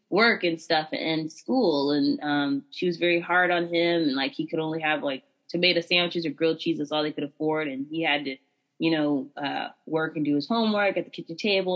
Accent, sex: American, female